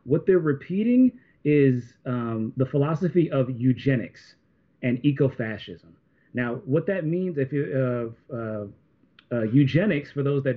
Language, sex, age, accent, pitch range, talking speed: English, male, 30-49, American, 125-155 Hz, 135 wpm